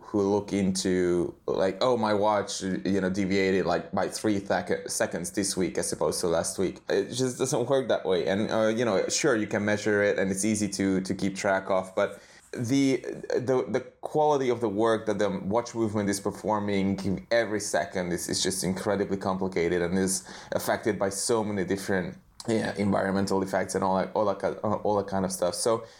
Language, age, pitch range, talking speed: English, 20-39, 95-105 Hz, 200 wpm